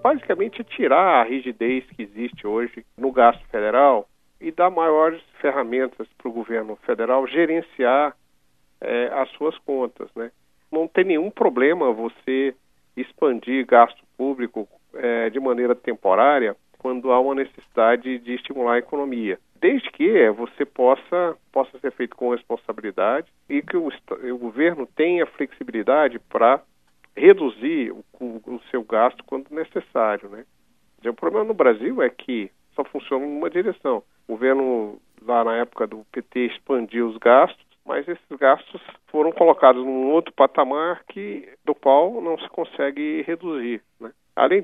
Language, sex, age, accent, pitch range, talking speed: Portuguese, male, 50-69, Brazilian, 120-155 Hz, 140 wpm